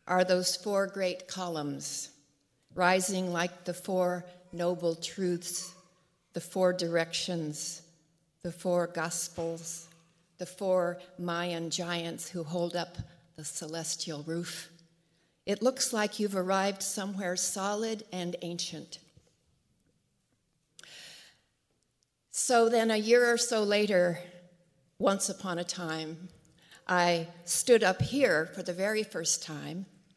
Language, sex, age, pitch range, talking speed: English, female, 60-79, 170-200 Hz, 110 wpm